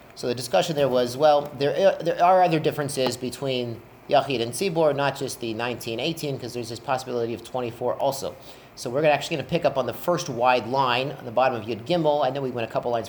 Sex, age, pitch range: male, 40-59, 125-155 Hz